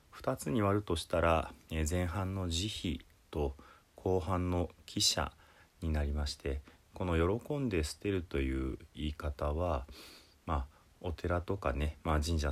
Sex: male